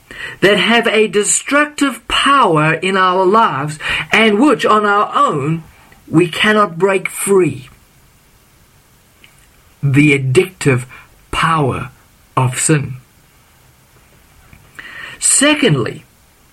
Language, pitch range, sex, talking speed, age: English, 155-235 Hz, male, 85 wpm, 50-69